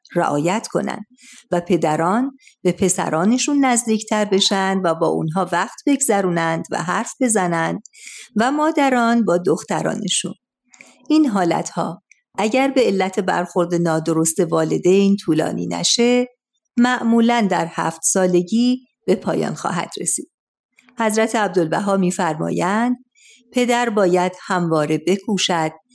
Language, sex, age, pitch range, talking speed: Persian, female, 50-69, 170-230 Hz, 105 wpm